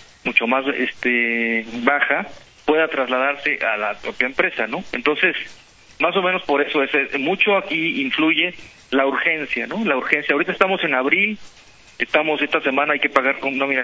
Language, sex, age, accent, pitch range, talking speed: Spanish, male, 40-59, Mexican, 125-155 Hz, 165 wpm